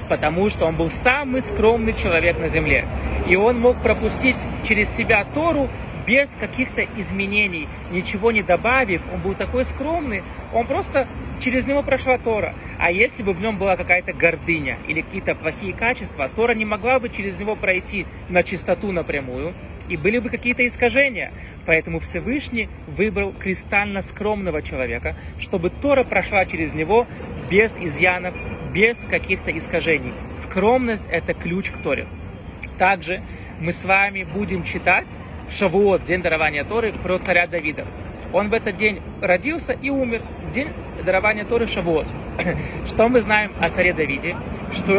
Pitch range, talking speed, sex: 180-235 Hz, 150 wpm, male